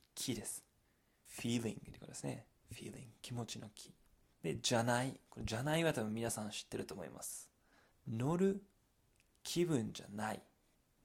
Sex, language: male, Japanese